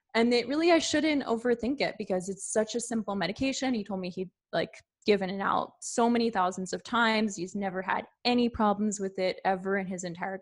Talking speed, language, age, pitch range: 215 wpm, English, 20-39, 190-230 Hz